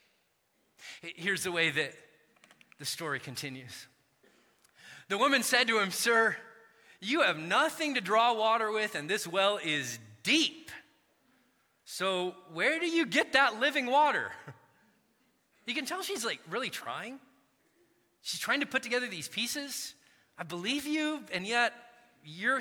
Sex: male